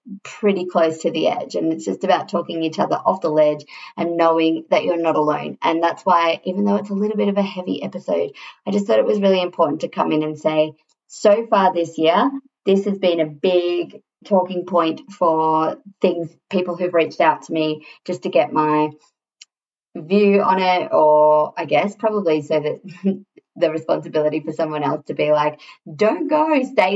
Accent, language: Australian, English